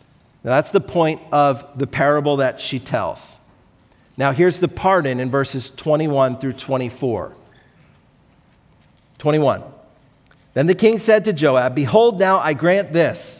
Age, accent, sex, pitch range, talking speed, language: 50-69, American, male, 140-180 Hz, 140 wpm, English